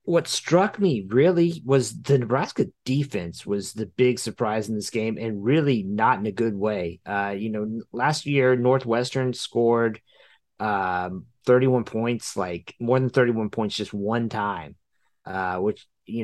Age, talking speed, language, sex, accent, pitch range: 30-49, 160 wpm, English, male, American, 105-130 Hz